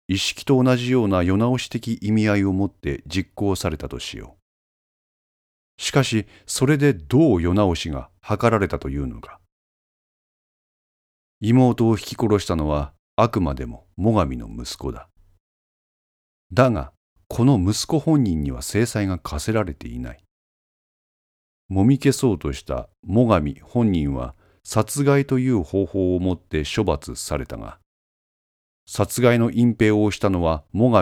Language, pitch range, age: Japanese, 75-115 Hz, 40-59